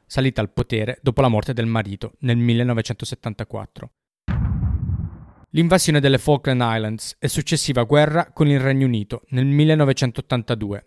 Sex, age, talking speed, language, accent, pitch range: male, 20-39, 125 wpm, Italian, native, 115-150 Hz